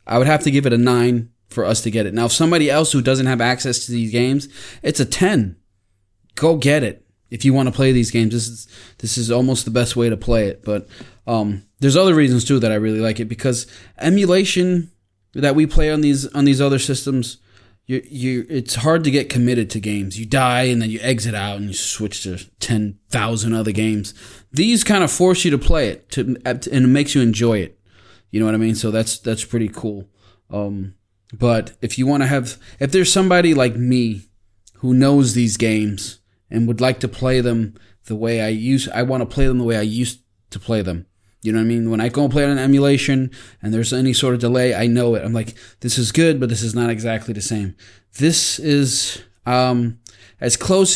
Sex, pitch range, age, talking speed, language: male, 105-130 Hz, 20-39, 230 wpm, English